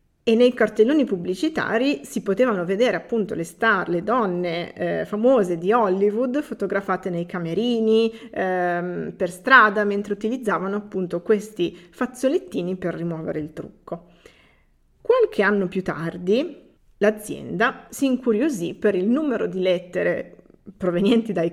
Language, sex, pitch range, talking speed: Italian, female, 185-240 Hz, 125 wpm